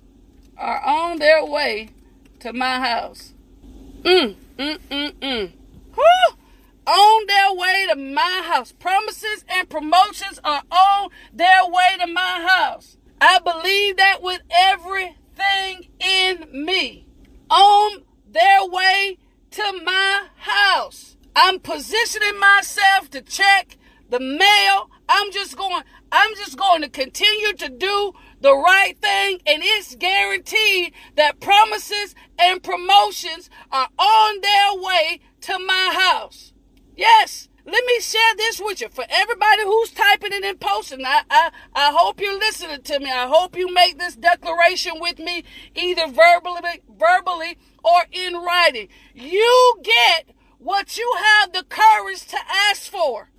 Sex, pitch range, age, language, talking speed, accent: female, 330-405 Hz, 40-59, English, 135 wpm, American